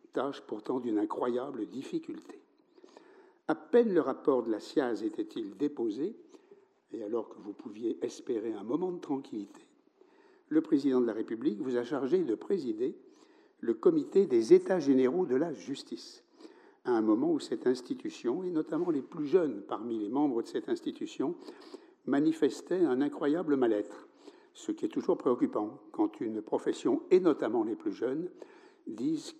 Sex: male